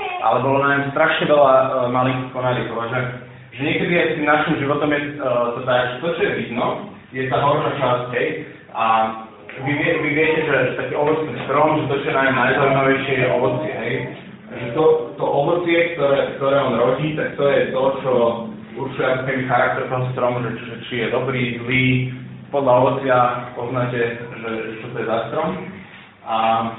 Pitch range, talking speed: 125-160 Hz, 175 wpm